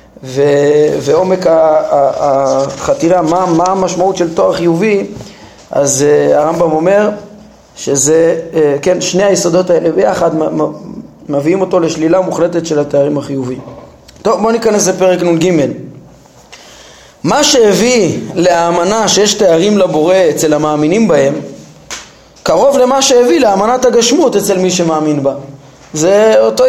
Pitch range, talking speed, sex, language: 165-220 Hz, 120 wpm, male, Hebrew